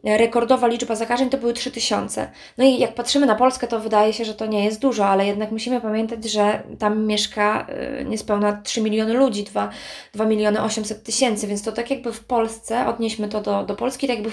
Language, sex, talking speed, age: Polish, female, 205 wpm, 20-39